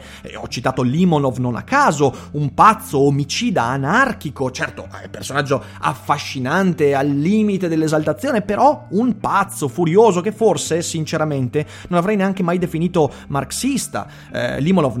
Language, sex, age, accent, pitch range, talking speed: Italian, male, 30-49, native, 135-180 Hz, 130 wpm